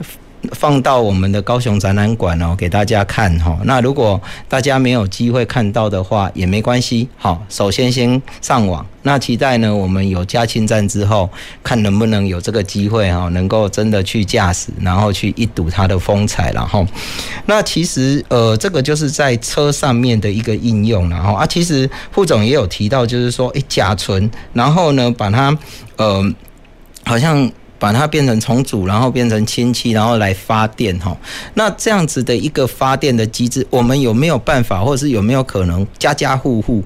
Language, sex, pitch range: Chinese, male, 100-130 Hz